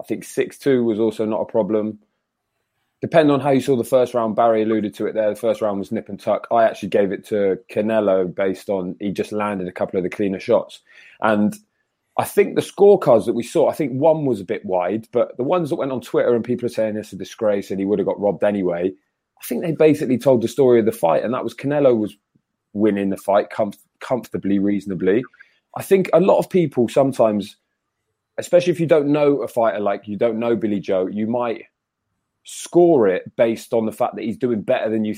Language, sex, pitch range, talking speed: English, male, 105-150 Hz, 230 wpm